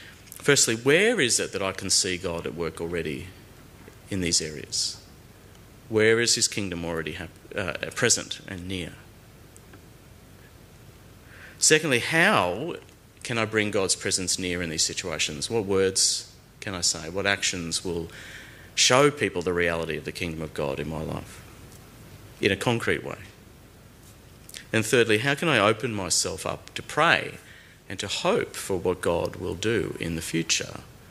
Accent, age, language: Australian, 40-59, English